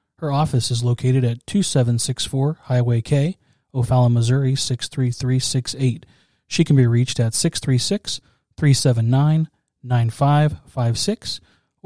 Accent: American